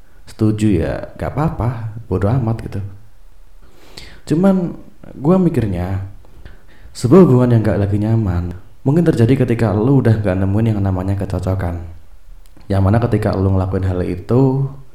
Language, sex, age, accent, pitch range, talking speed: Indonesian, male, 30-49, native, 95-120 Hz, 135 wpm